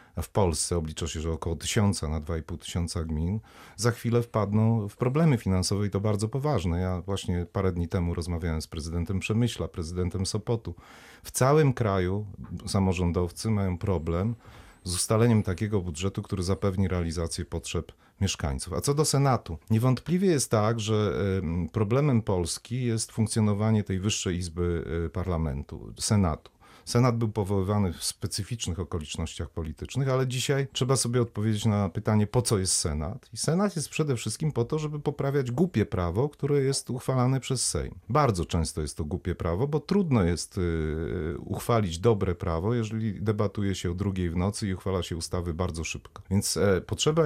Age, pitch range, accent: 40-59, 90-120 Hz, native